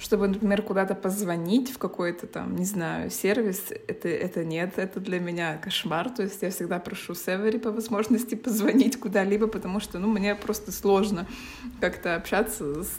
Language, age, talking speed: Russian, 20-39, 165 wpm